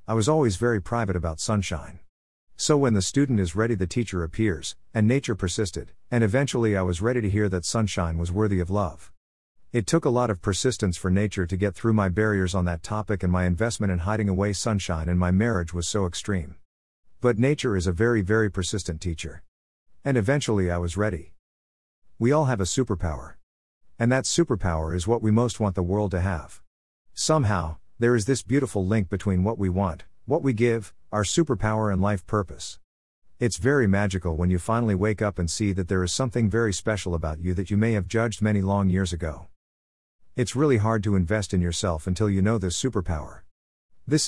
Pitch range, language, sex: 90-115 Hz, English, male